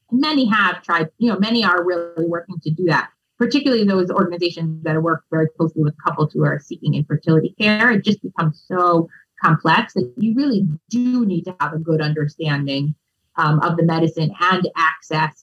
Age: 30-49